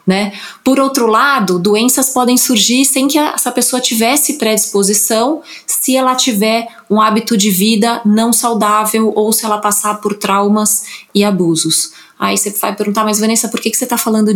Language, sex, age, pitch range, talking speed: Portuguese, female, 20-39, 195-225 Hz, 170 wpm